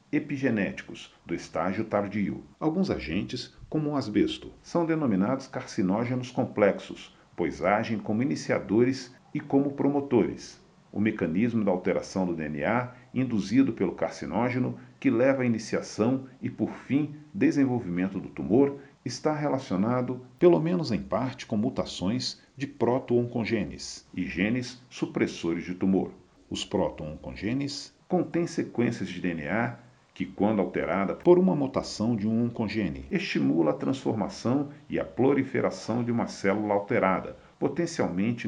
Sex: male